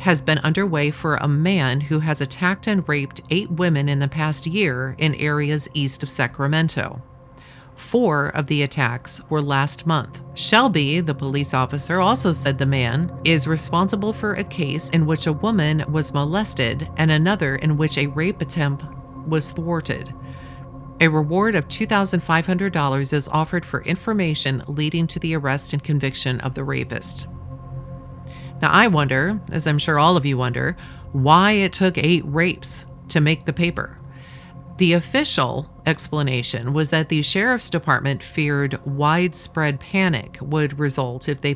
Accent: American